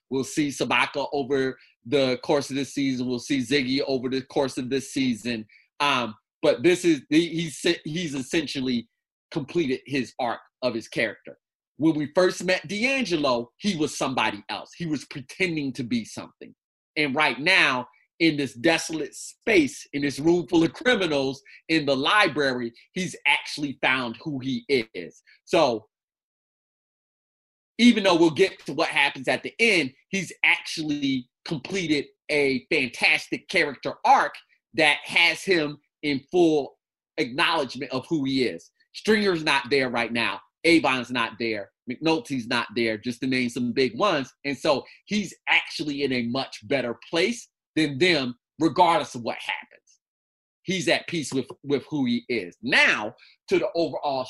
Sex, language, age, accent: male, English, 30-49, American